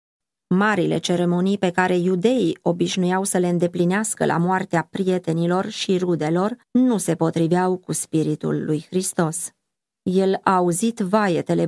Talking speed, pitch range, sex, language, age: 130 wpm, 175-225 Hz, female, Romanian, 20-39